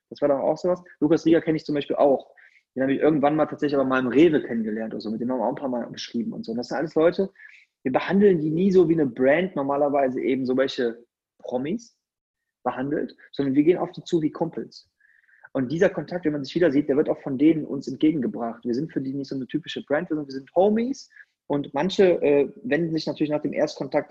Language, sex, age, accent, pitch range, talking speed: German, male, 30-49, German, 130-170 Hz, 250 wpm